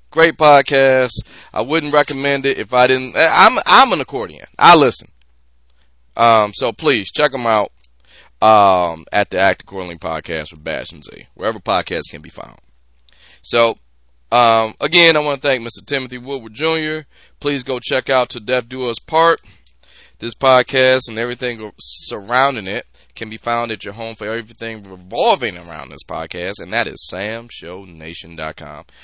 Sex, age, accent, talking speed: male, 20-39, American, 160 wpm